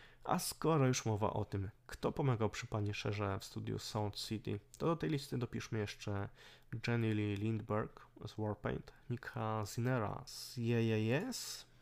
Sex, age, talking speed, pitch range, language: male, 20-39, 145 wpm, 105-125 Hz, Polish